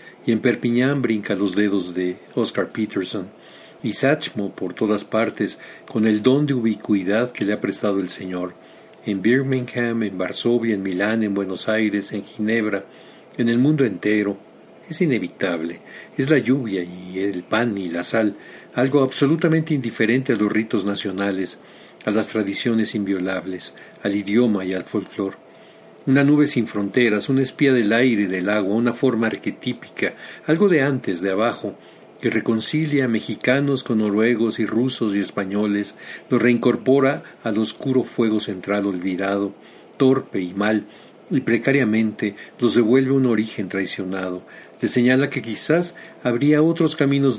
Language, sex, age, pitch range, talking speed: Spanish, male, 50-69, 100-130 Hz, 150 wpm